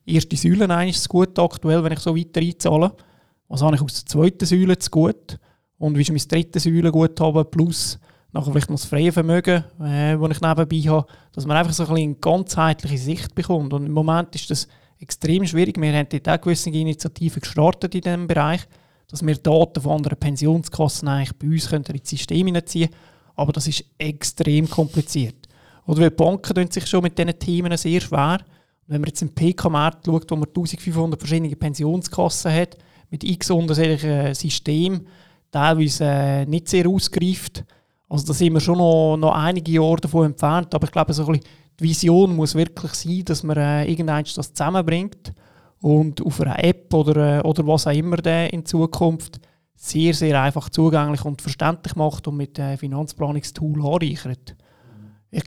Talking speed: 185 wpm